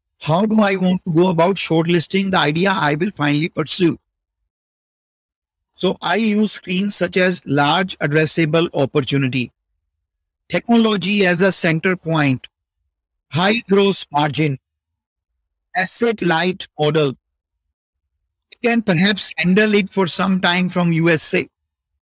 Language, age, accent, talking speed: English, 50-69, Indian, 120 wpm